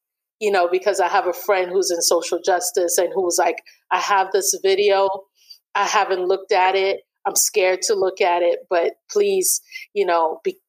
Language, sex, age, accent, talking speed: English, female, 30-49, American, 190 wpm